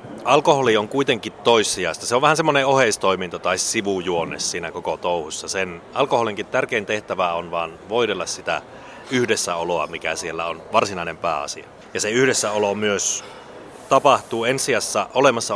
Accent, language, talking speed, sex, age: native, Finnish, 140 wpm, male, 30-49